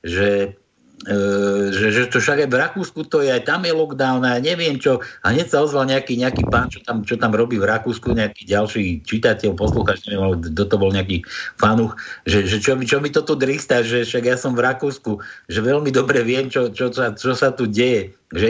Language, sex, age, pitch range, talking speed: Slovak, male, 60-79, 110-135 Hz, 215 wpm